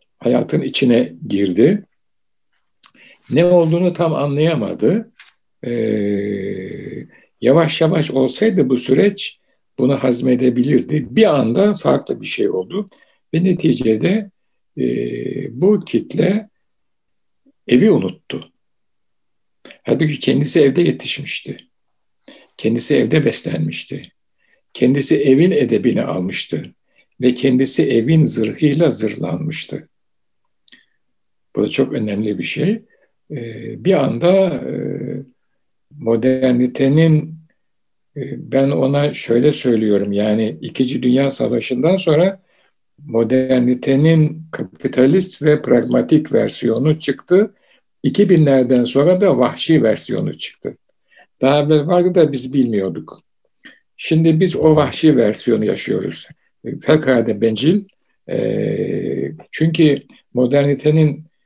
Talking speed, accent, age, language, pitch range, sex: 90 wpm, native, 60-79, Turkish, 125-180 Hz, male